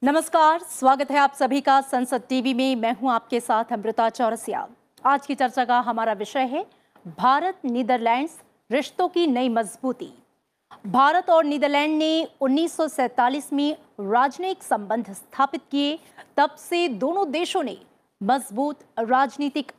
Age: 30-49